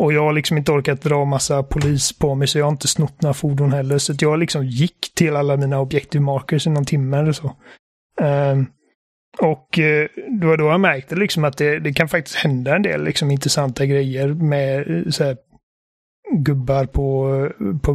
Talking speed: 185 wpm